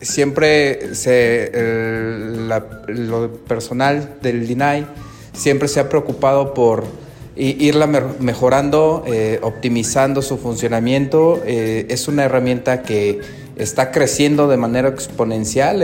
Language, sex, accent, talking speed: Spanish, male, Mexican, 110 wpm